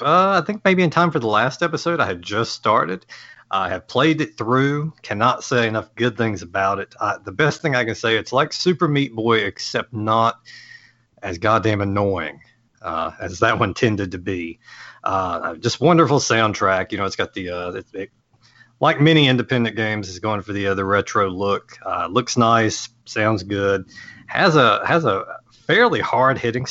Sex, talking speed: male, 185 wpm